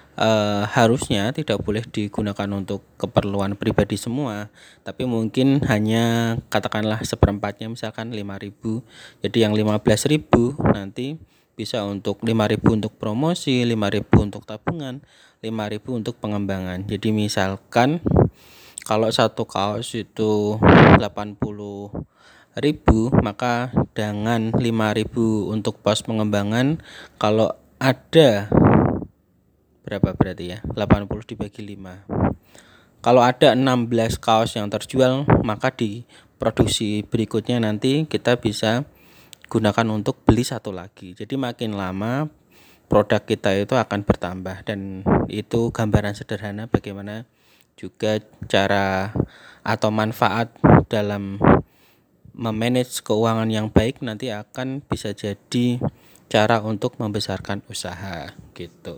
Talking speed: 105 wpm